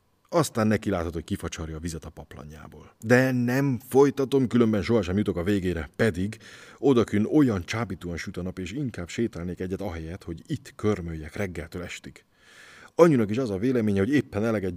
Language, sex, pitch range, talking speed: Hungarian, male, 90-125 Hz, 170 wpm